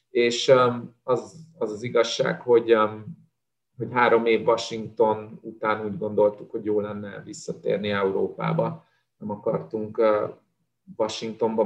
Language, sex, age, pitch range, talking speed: Hungarian, male, 30-49, 105-145 Hz, 110 wpm